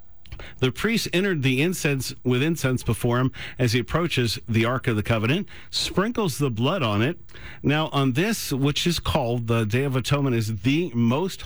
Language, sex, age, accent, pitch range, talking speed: English, male, 50-69, American, 115-145 Hz, 185 wpm